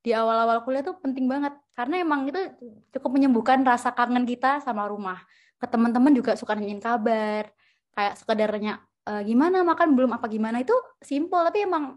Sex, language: female, Indonesian